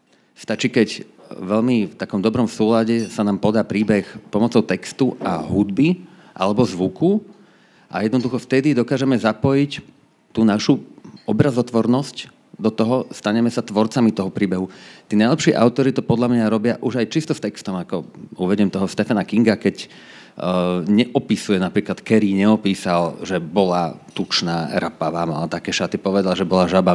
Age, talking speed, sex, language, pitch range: 40-59, 145 wpm, male, Slovak, 95-120 Hz